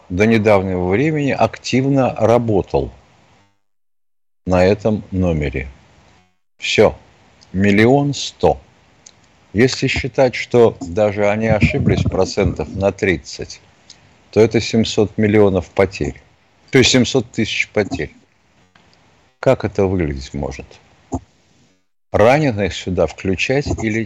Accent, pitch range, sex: native, 95-120 Hz, male